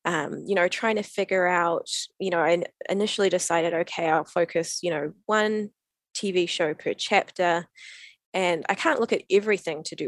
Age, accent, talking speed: 20-39, Australian, 180 wpm